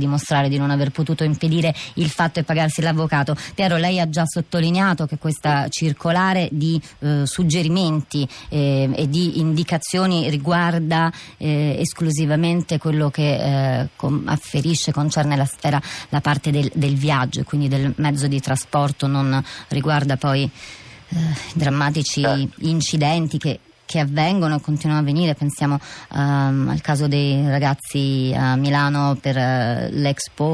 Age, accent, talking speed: 30-49, native, 140 wpm